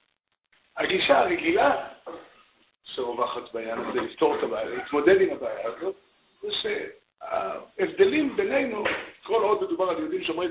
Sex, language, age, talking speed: male, Hebrew, 60-79, 120 wpm